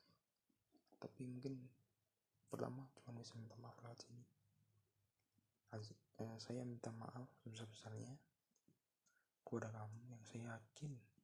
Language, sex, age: Indonesian, male, 20-39